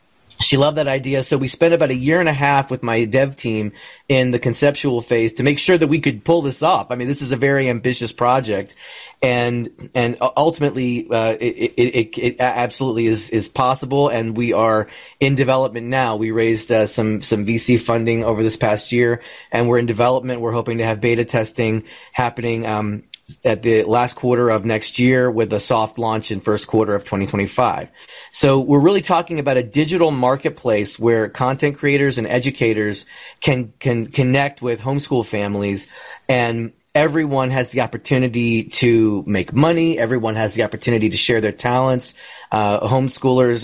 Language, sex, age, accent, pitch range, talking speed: English, male, 30-49, American, 115-135 Hz, 180 wpm